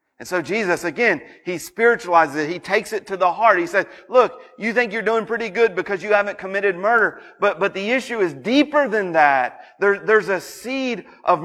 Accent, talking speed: American, 210 wpm